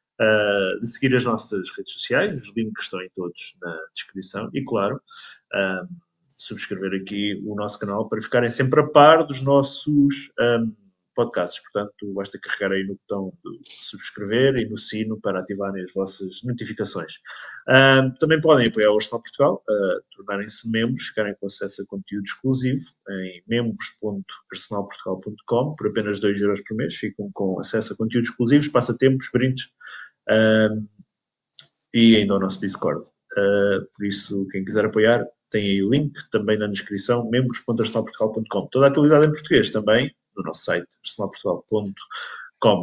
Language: Portuguese